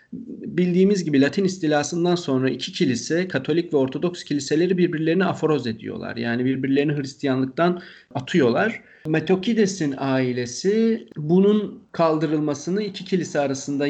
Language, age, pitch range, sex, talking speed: Turkish, 40-59, 130-180 Hz, male, 110 wpm